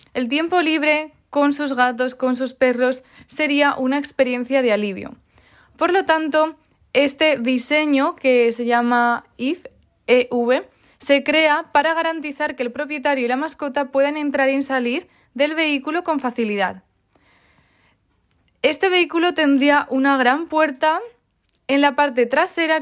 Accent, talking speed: Spanish, 135 wpm